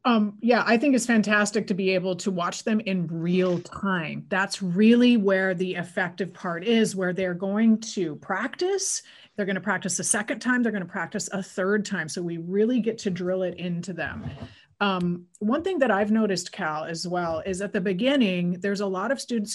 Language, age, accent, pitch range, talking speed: English, 30-49, American, 185-240 Hz, 210 wpm